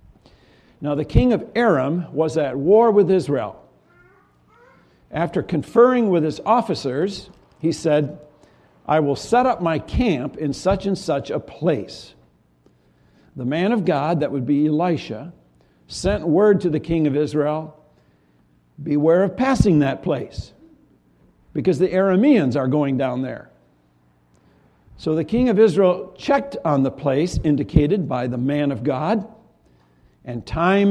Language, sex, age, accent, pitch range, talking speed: English, male, 60-79, American, 125-190 Hz, 140 wpm